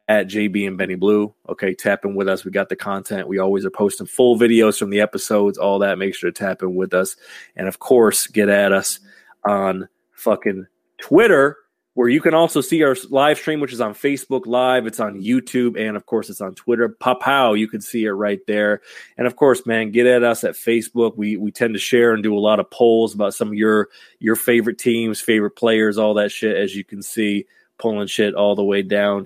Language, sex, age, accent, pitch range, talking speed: English, male, 30-49, American, 100-120 Hz, 230 wpm